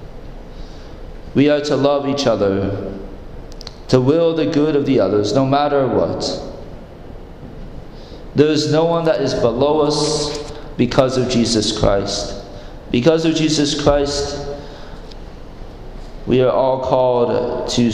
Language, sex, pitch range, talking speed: English, male, 100-150 Hz, 125 wpm